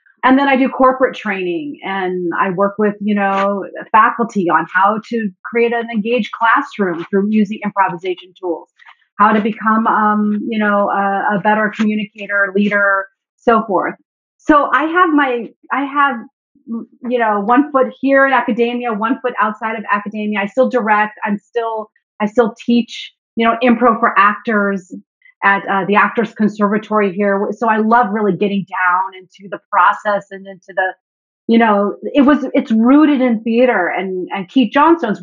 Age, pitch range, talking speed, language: 30-49, 205-245 Hz, 165 wpm, English